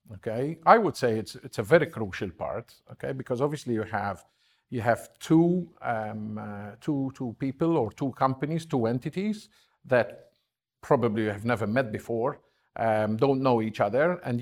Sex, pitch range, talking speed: male, 110-140 Hz, 165 wpm